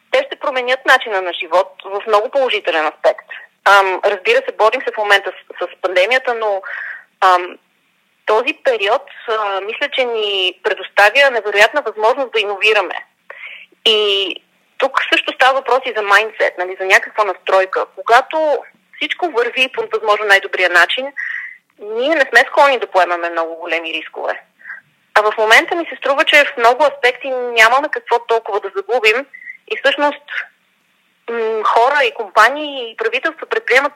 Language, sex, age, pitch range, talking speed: Bulgarian, female, 30-49, 205-290 Hz, 150 wpm